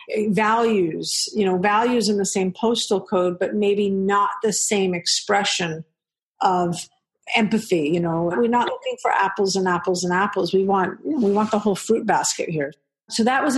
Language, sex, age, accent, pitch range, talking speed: English, female, 50-69, American, 180-225 Hz, 175 wpm